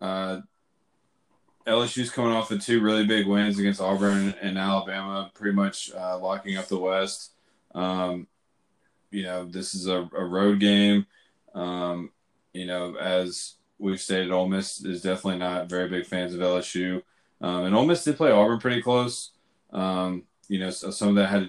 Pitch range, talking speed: 90-105 Hz, 175 wpm